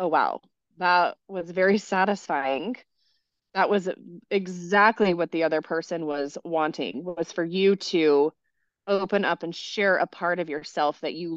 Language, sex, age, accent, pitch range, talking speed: English, female, 20-39, American, 170-215 Hz, 155 wpm